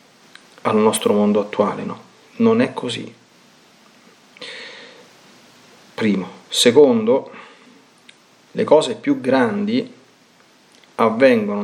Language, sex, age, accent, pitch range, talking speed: Italian, male, 40-59, native, 205-240 Hz, 75 wpm